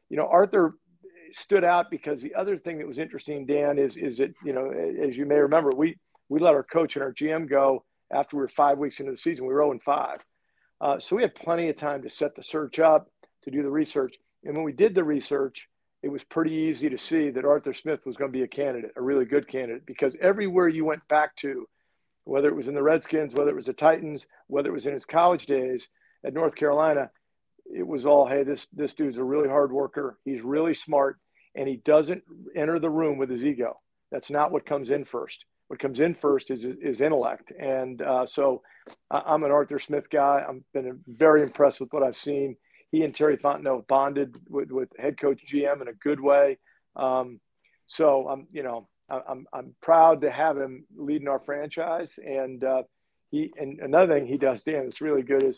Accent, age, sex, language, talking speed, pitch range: American, 50-69, male, English, 220 wpm, 135-160 Hz